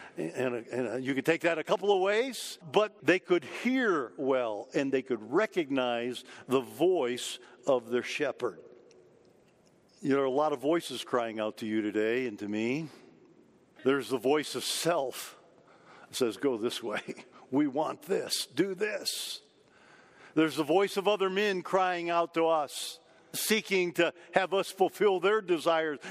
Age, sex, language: 50-69, male, English